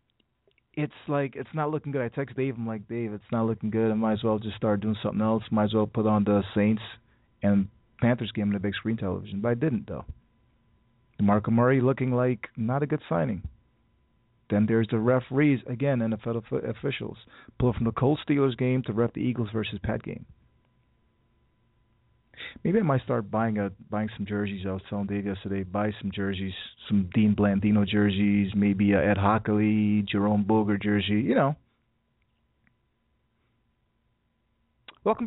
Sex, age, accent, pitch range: male, 30-49, American, 105-130 Hz